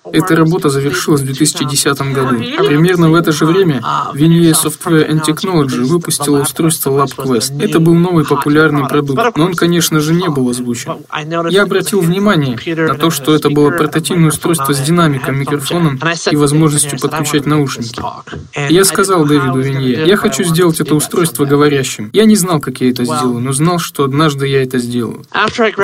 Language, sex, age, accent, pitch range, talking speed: Russian, male, 20-39, native, 135-165 Hz, 165 wpm